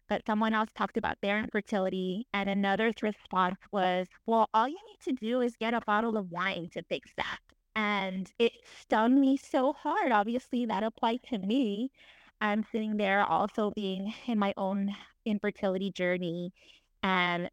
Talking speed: 165 wpm